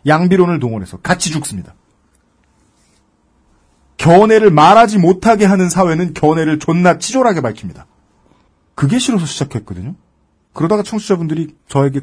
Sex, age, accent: male, 40-59, native